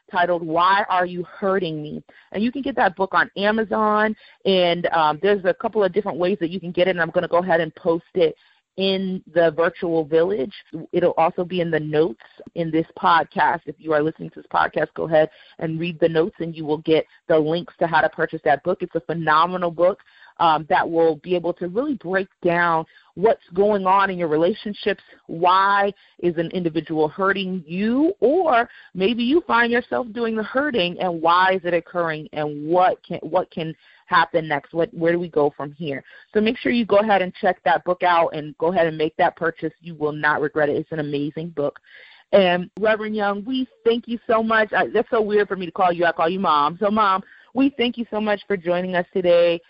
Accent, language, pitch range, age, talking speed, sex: American, English, 165-200 Hz, 30-49, 225 wpm, female